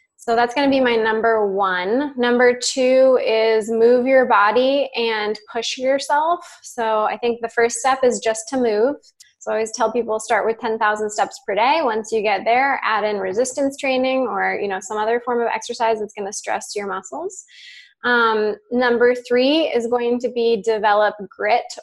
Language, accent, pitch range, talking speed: English, American, 210-245 Hz, 190 wpm